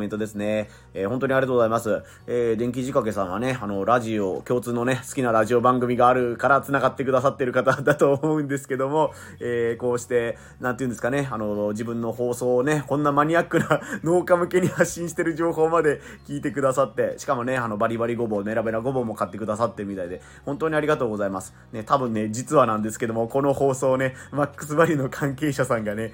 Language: Japanese